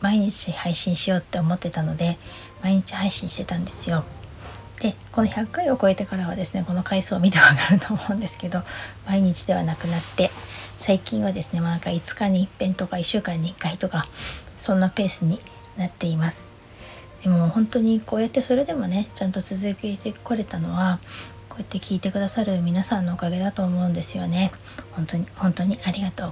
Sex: female